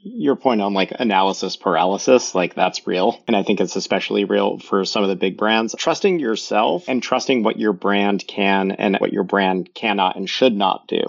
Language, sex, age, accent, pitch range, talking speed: English, male, 40-59, American, 95-115 Hz, 205 wpm